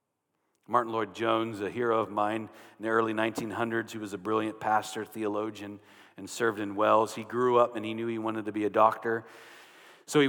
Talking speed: 200 wpm